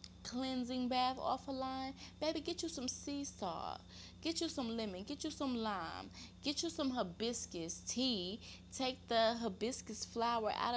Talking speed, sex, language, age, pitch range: 165 wpm, female, English, 20-39, 180-255 Hz